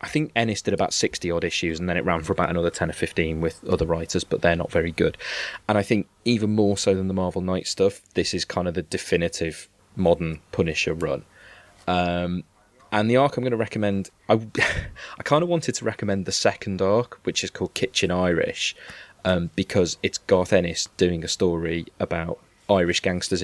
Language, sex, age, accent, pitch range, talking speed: English, male, 20-39, British, 85-100 Hz, 200 wpm